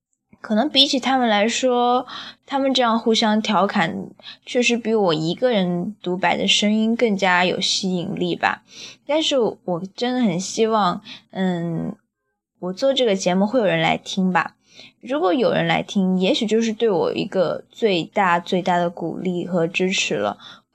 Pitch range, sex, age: 185-245 Hz, female, 10-29